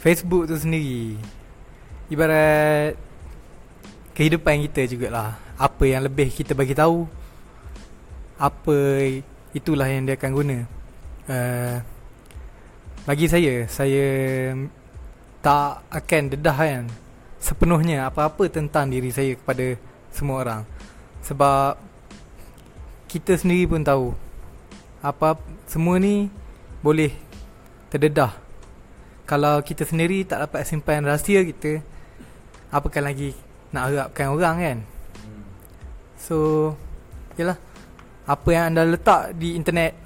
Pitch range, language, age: 125-155 Hz, English, 20-39